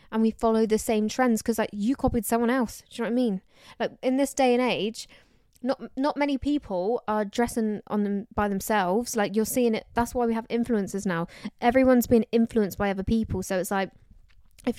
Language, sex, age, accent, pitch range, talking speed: English, female, 10-29, British, 210-260 Hz, 220 wpm